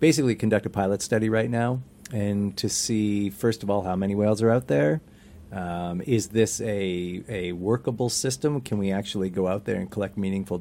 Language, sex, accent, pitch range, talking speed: English, male, American, 95-115 Hz, 200 wpm